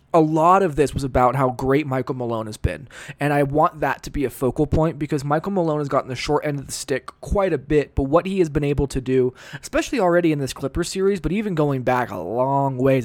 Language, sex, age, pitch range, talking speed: English, male, 20-39, 135-175 Hz, 255 wpm